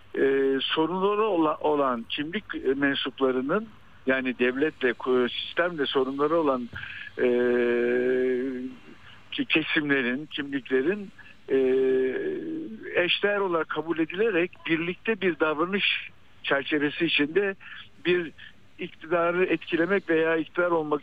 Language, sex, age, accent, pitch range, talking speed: Turkish, male, 60-79, native, 130-185 Hz, 85 wpm